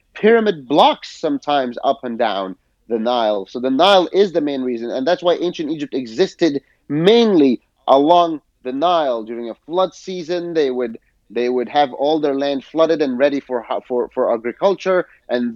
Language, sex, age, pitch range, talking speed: English, male, 30-49, 130-190 Hz, 175 wpm